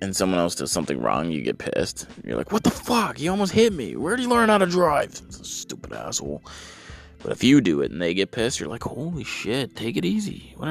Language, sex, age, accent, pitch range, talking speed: English, male, 20-39, American, 75-105 Hz, 245 wpm